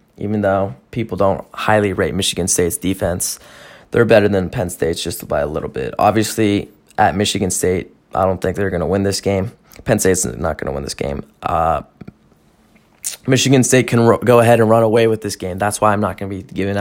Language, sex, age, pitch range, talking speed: English, male, 20-39, 95-115 Hz, 215 wpm